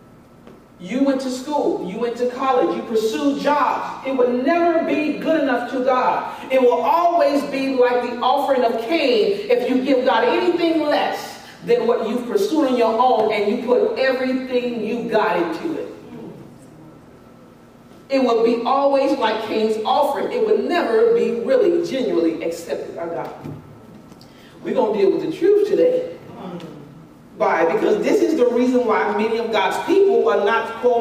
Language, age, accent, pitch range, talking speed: English, 40-59, American, 235-340 Hz, 165 wpm